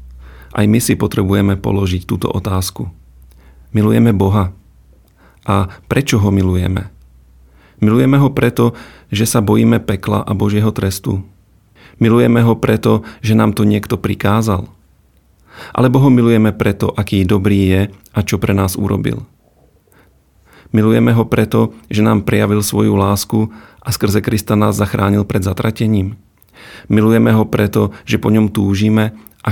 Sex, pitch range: male, 95-110 Hz